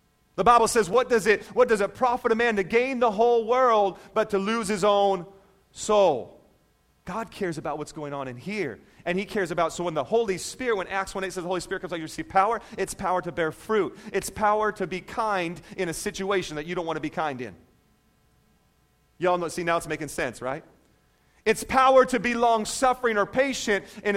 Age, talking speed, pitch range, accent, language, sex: 40-59, 225 wpm, 160-220 Hz, American, English, male